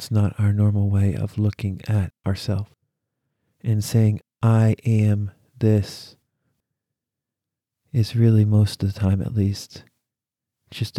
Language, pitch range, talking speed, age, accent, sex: English, 95-120 Hz, 125 wpm, 40-59, American, male